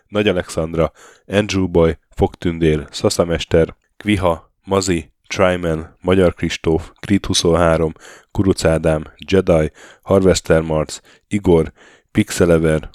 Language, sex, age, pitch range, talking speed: Hungarian, male, 10-29, 80-95 Hz, 90 wpm